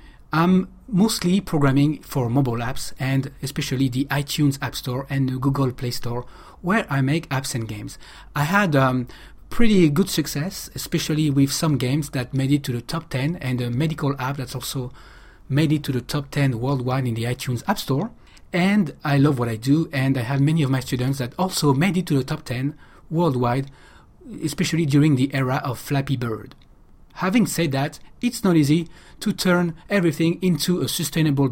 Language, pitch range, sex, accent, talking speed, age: English, 130-160 Hz, male, French, 190 wpm, 40-59